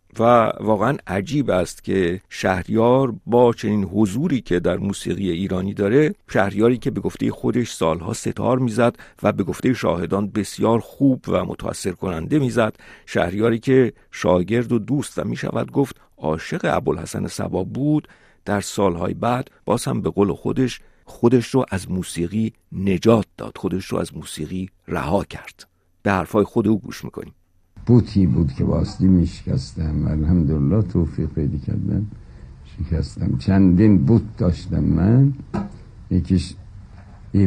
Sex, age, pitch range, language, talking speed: male, 50-69, 90-110 Hz, Persian, 140 wpm